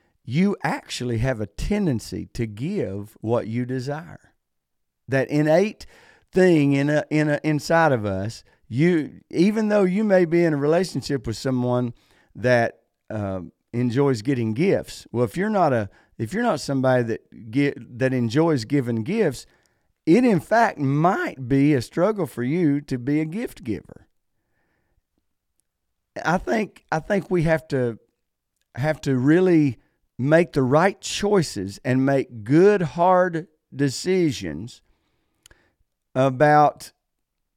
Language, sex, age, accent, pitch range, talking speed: English, male, 50-69, American, 125-175 Hz, 135 wpm